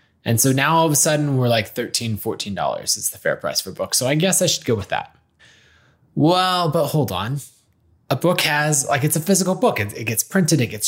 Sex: male